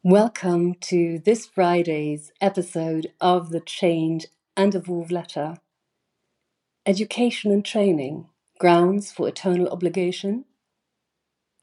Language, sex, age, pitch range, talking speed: English, female, 40-59, 175-205 Hz, 95 wpm